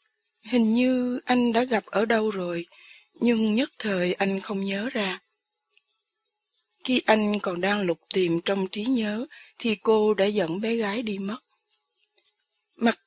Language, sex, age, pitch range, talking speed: English, female, 20-39, 190-240 Hz, 150 wpm